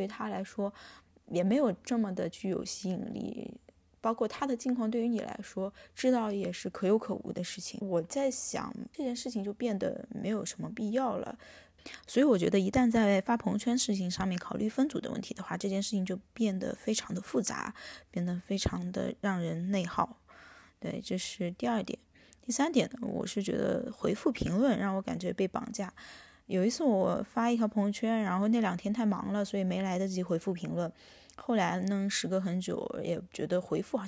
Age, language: 20-39, Chinese